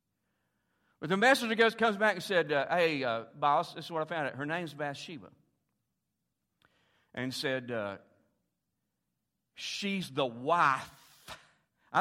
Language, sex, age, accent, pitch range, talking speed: English, male, 50-69, American, 135-185 Hz, 135 wpm